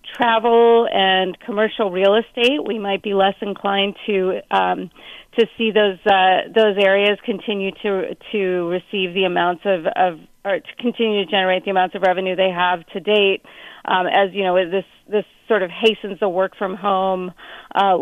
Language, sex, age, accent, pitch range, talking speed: English, female, 40-59, American, 195-230 Hz, 170 wpm